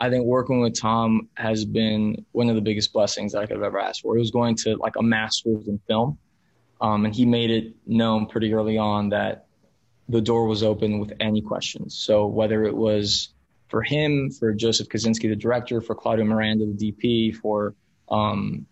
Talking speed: 200 wpm